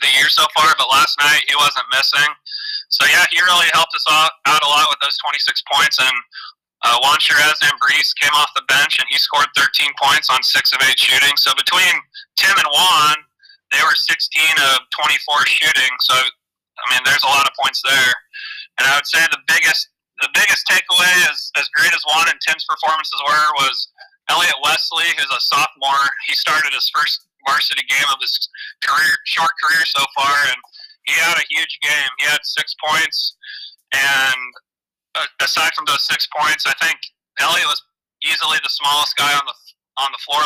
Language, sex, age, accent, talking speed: English, male, 30-49, American, 195 wpm